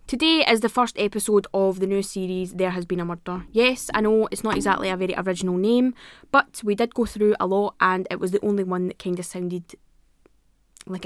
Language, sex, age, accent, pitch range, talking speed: English, female, 20-39, British, 185-220 Hz, 230 wpm